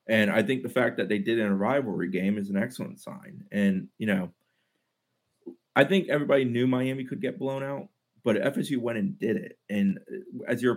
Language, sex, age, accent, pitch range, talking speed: English, male, 30-49, American, 95-125 Hz, 205 wpm